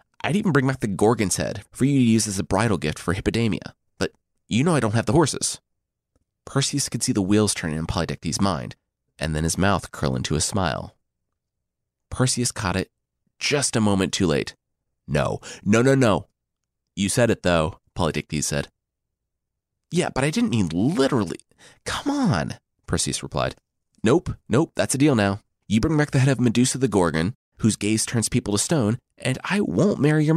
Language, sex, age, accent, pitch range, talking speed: English, male, 30-49, American, 95-130 Hz, 190 wpm